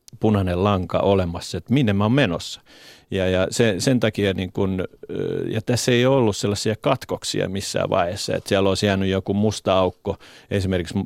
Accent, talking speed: native, 170 wpm